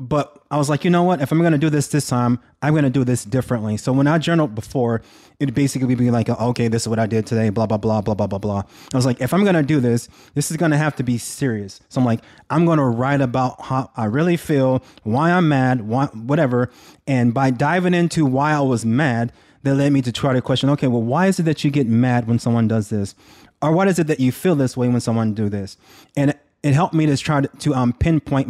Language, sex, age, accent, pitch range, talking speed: English, male, 20-39, American, 115-145 Hz, 270 wpm